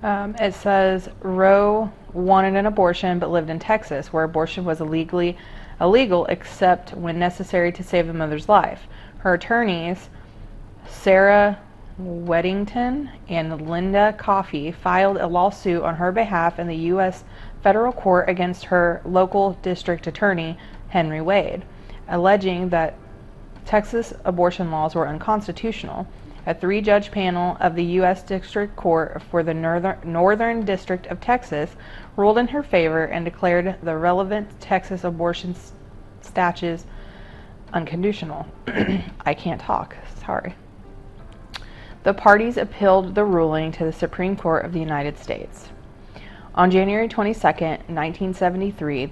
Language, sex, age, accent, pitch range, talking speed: English, female, 30-49, American, 165-195 Hz, 125 wpm